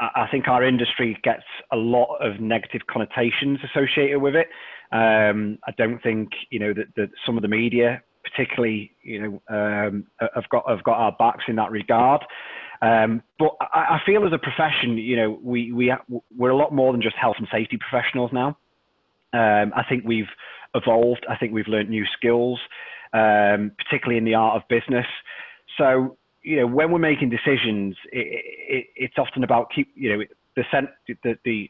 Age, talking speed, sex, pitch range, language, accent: 30-49, 180 wpm, male, 110-130 Hz, English, British